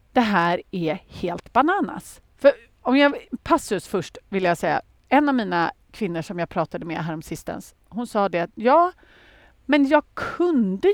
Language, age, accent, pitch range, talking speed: Swedish, 40-59, native, 180-300 Hz, 160 wpm